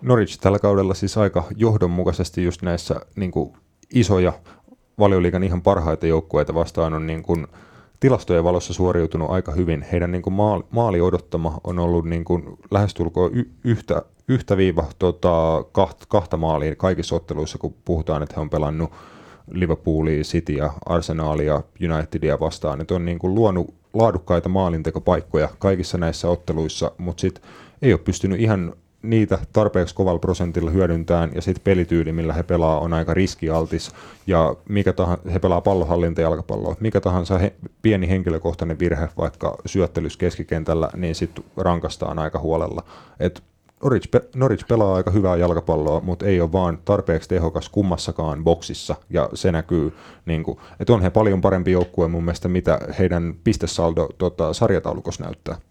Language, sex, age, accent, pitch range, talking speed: Finnish, male, 30-49, native, 80-95 Hz, 145 wpm